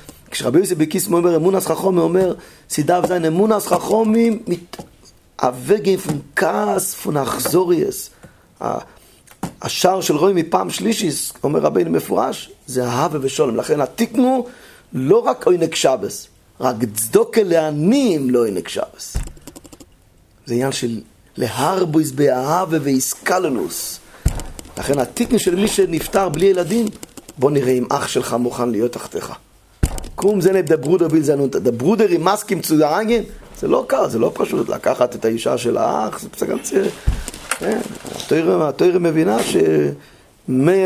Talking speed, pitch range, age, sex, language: 120 wpm, 140-215 Hz, 40-59, male, English